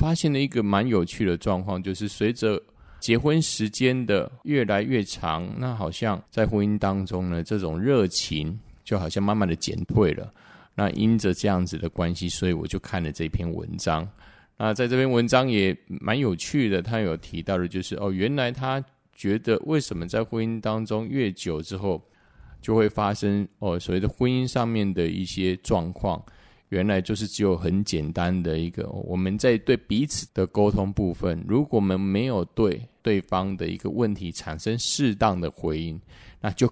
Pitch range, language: 90-115 Hz, Chinese